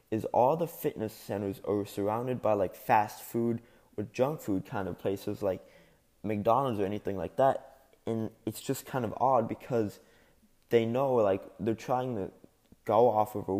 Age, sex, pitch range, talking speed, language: 20-39, male, 100-120 Hz, 175 wpm, English